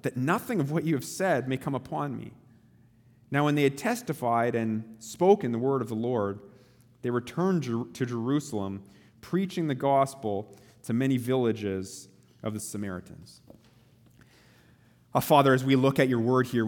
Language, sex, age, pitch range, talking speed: English, male, 30-49, 100-125 Hz, 160 wpm